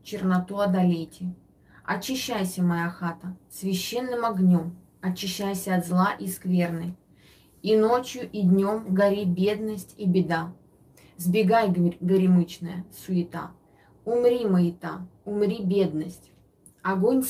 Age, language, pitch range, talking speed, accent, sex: 20-39, Russian, 175-210 Hz, 95 wpm, native, female